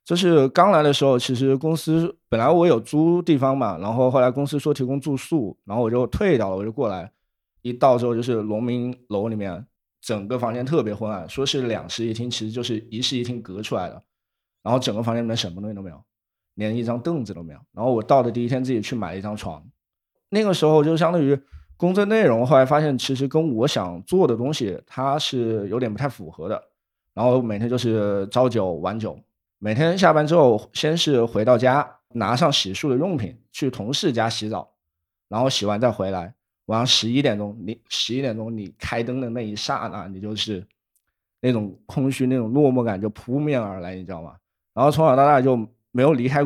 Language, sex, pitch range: Chinese, male, 105-140 Hz